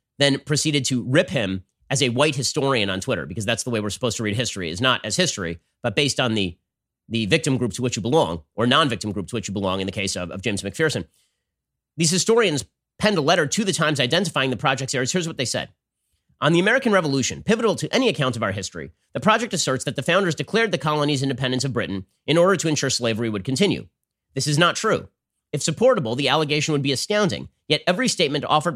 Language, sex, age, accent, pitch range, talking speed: English, male, 30-49, American, 115-160 Hz, 230 wpm